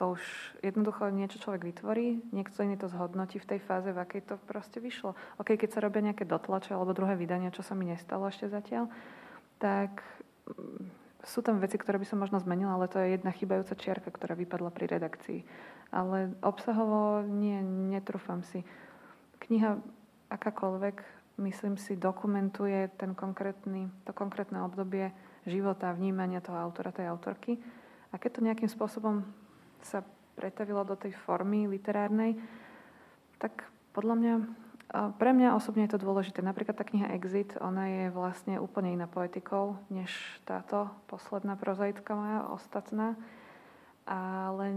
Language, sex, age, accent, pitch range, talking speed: Czech, female, 20-39, native, 190-210 Hz, 145 wpm